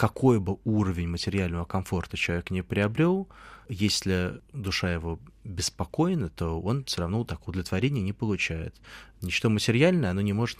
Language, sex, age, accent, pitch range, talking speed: Russian, male, 20-39, native, 90-110 Hz, 145 wpm